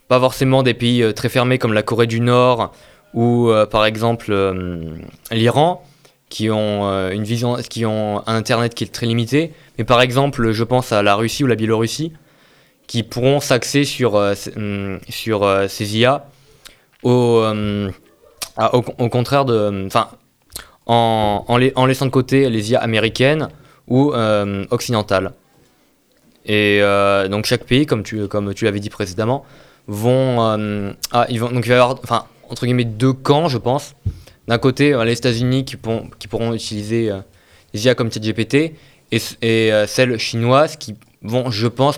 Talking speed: 165 wpm